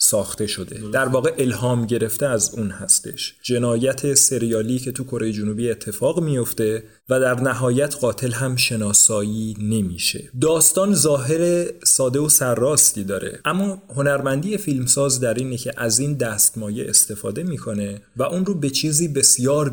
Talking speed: 145 wpm